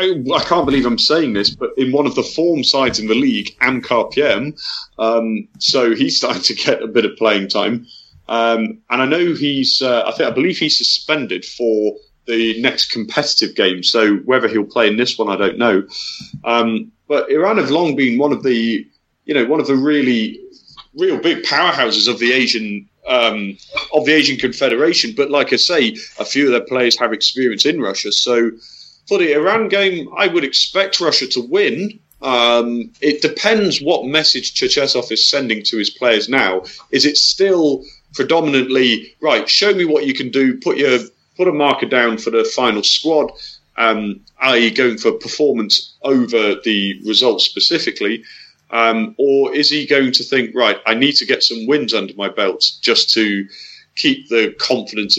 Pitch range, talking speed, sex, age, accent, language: 110-155 Hz, 180 wpm, male, 30-49, British, English